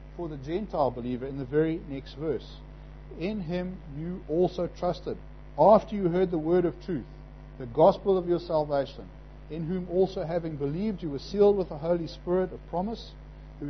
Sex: male